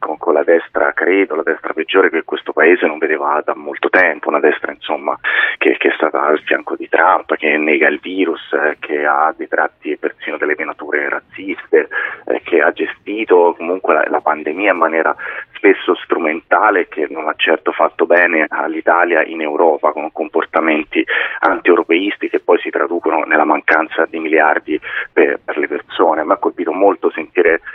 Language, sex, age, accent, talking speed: Italian, male, 30-49, native, 170 wpm